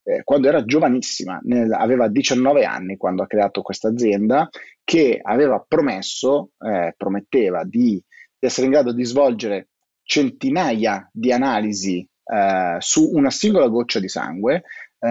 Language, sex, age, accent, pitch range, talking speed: Italian, male, 30-49, native, 105-140 Hz, 145 wpm